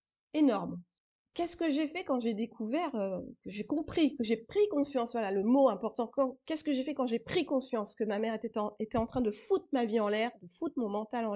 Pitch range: 220-270 Hz